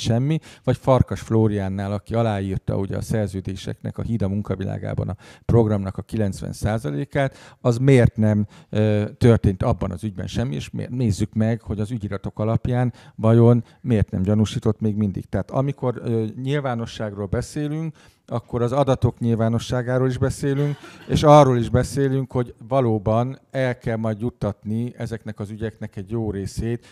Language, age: Hungarian, 50-69